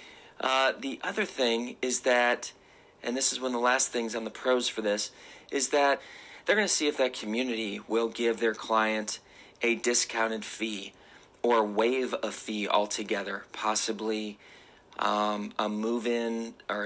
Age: 40-59